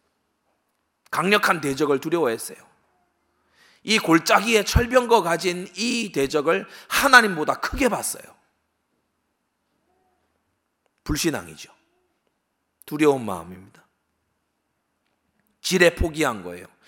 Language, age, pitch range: Korean, 40-59, 135-190 Hz